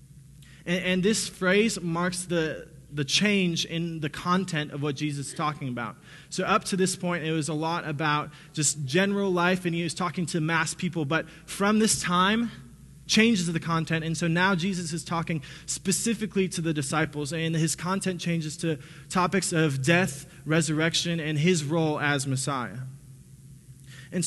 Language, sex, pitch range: English, male, 150-185 Hz